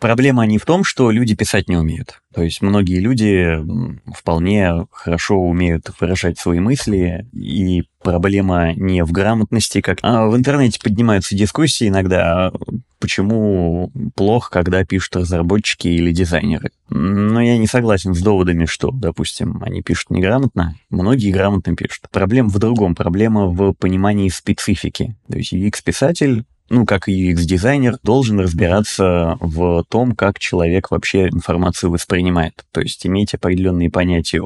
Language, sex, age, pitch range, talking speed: Russian, male, 20-39, 85-105 Hz, 140 wpm